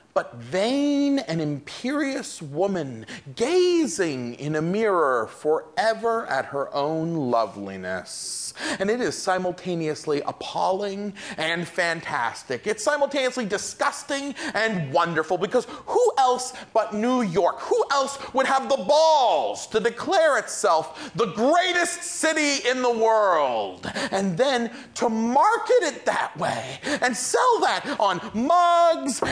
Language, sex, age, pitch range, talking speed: English, male, 40-59, 200-305 Hz, 120 wpm